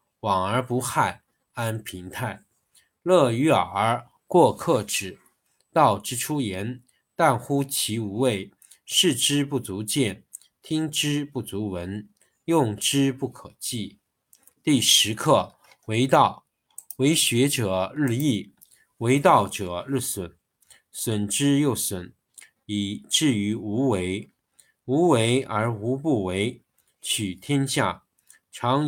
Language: Chinese